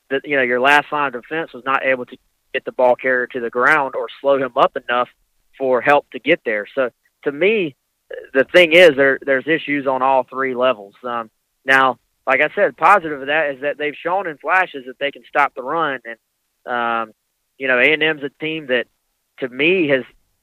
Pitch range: 130-150 Hz